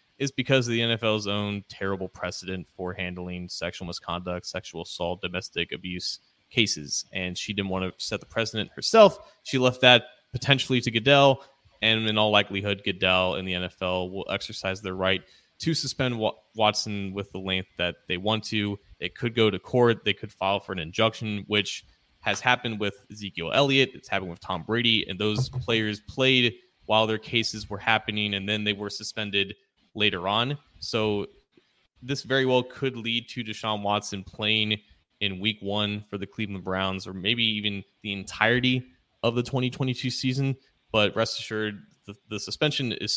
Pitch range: 95-120 Hz